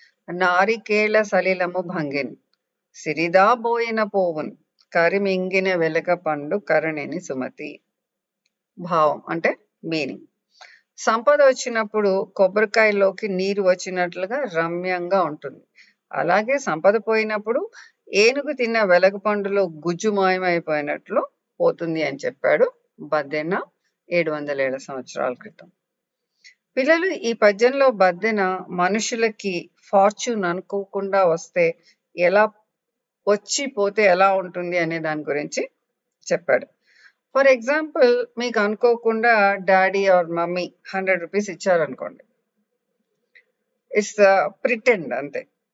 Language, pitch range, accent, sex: English, 185-240 Hz, Indian, female